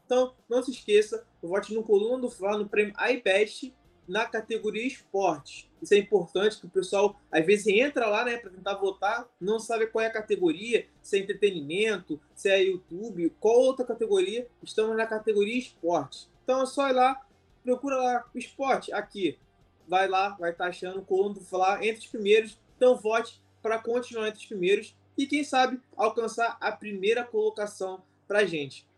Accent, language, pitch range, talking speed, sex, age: Brazilian, Portuguese, 195-260 Hz, 180 wpm, male, 20-39